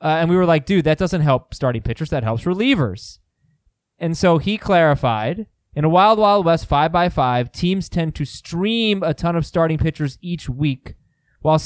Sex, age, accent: male, 20-39, American